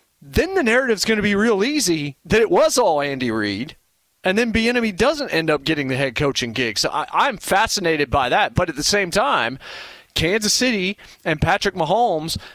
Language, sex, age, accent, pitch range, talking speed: English, male, 30-49, American, 150-205 Hz, 195 wpm